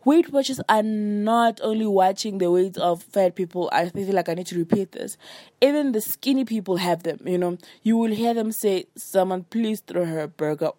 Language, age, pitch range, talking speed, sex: English, 20-39, 175-235 Hz, 210 wpm, female